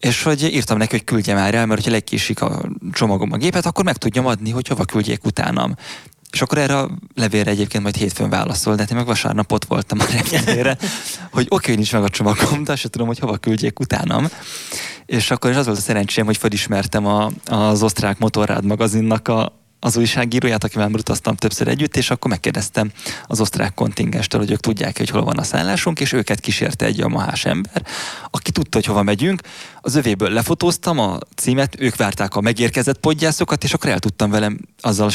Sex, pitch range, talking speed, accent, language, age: male, 105-125 Hz, 195 wpm, Finnish, English, 20-39